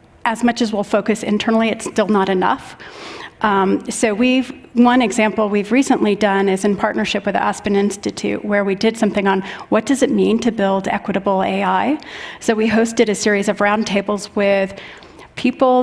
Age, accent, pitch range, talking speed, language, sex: 40-59, American, 195-220 Hz, 180 wpm, English, female